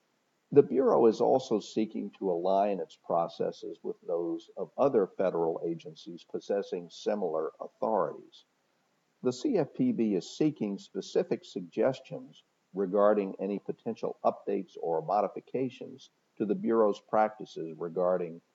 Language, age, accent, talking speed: English, 50-69, American, 115 wpm